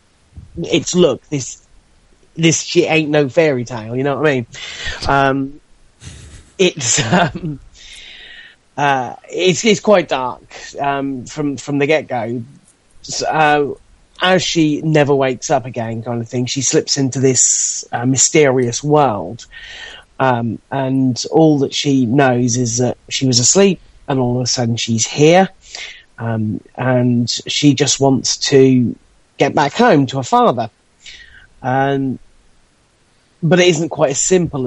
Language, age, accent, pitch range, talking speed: English, 30-49, British, 120-150 Hz, 145 wpm